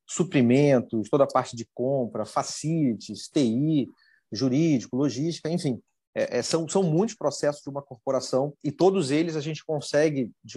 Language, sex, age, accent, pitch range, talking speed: Portuguese, male, 30-49, Brazilian, 125-155 Hz, 150 wpm